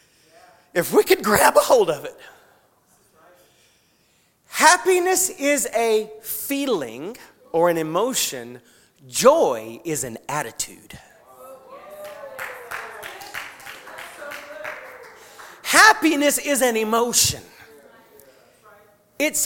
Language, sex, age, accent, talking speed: English, male, 40-59, American, 75 wpm